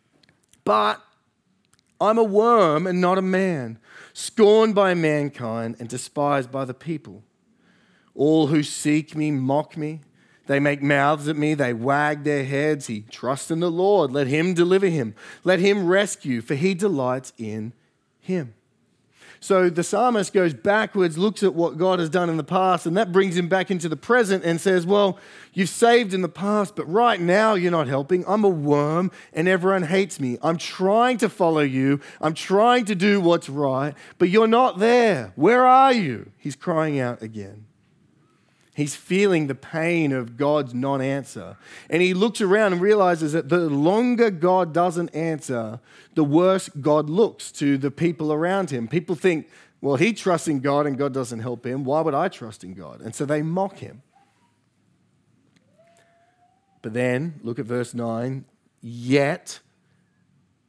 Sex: male